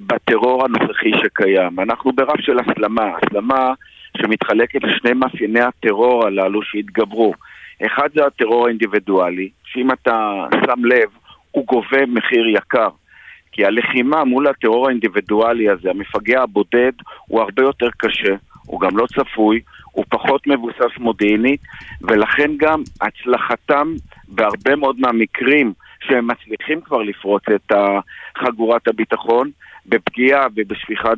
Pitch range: 110-135 Hz